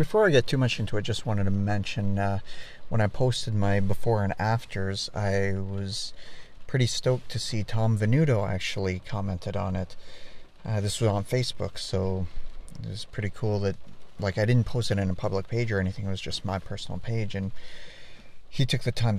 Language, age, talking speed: English, 40-59, 200 wpm